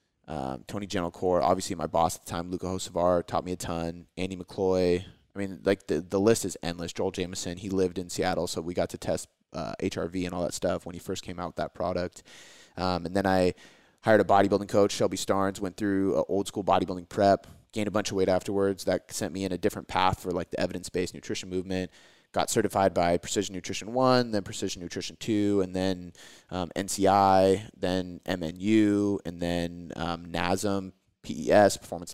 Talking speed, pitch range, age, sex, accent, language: 205 wpm, 85-100 Hz, 30-49, male, American, English